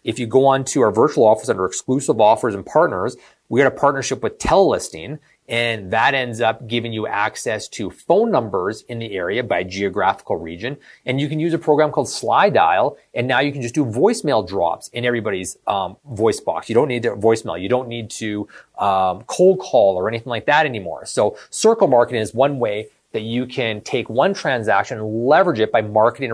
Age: 30-49